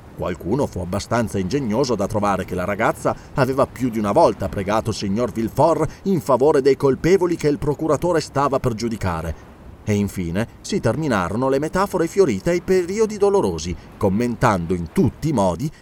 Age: 30-49